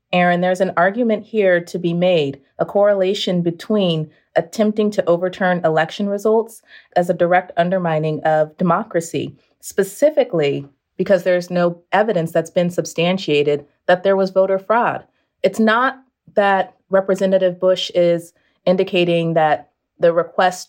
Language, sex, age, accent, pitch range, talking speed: English, female, 30-49, American, 165-190 Hz, 130 wpm